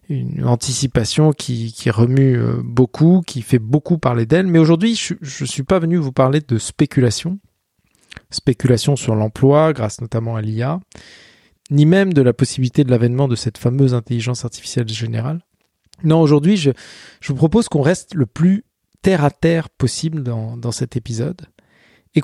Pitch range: 120-165 Hz